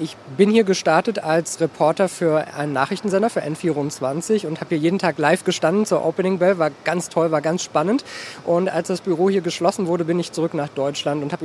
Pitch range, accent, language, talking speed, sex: 155-185 Hz, German, German, 215 wpm, male